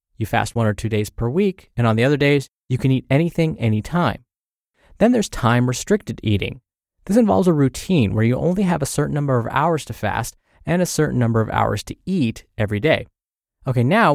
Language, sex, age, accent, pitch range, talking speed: English, male, 20-39, American, 115-155 Hz, 210 wpm